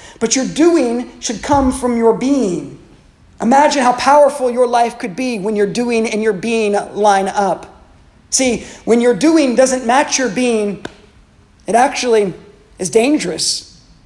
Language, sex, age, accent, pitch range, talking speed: English, male, 40-59, American, 205-245 Hz, 150 wpm